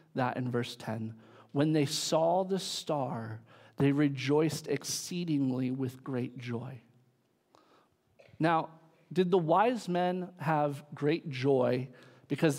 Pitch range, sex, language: 130-160 Hz, male, English